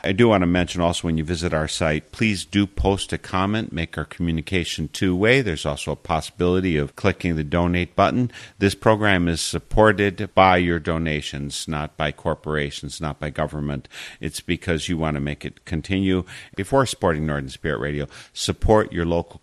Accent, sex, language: American, male, English